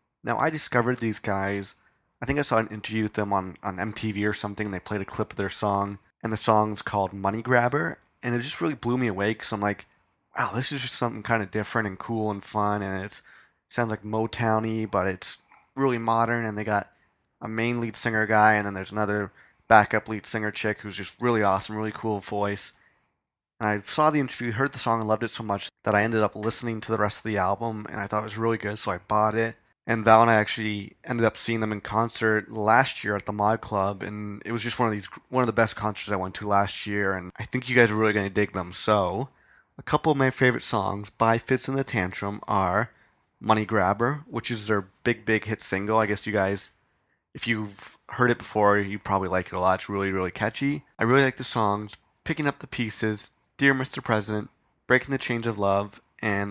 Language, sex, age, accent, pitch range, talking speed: English, male, 20-39, American, 100-115 Hz, 240 wpm